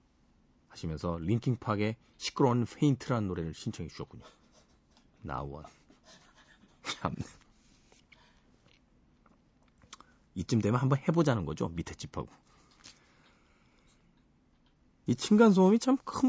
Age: 30-49